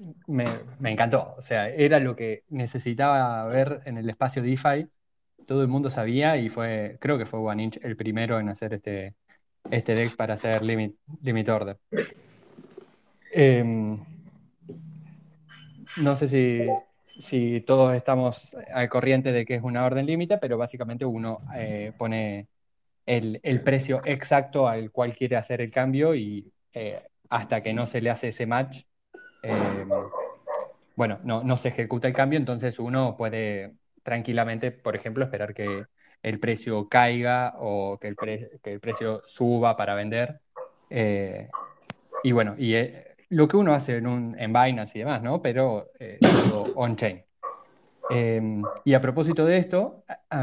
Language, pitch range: Spanish, 110-135 Hz